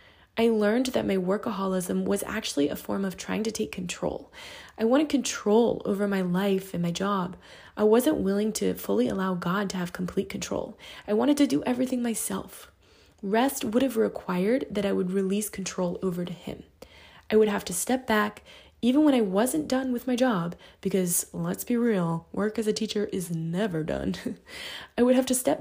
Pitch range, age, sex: 185-225 Hz, 20-39, female